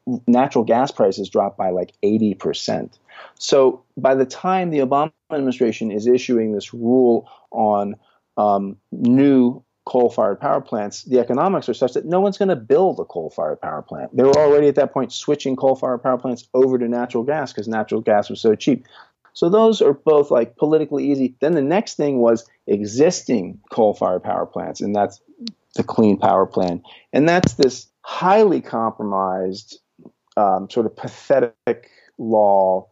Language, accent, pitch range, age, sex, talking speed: English, American, 115-145 Hz, 40-59, male, 165 wpm